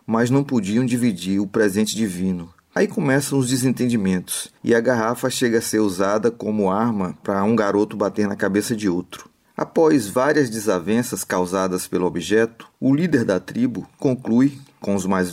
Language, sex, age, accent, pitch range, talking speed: Portuguese, male, 30-49, Brazilian, 95-115 Hz, 165 wpm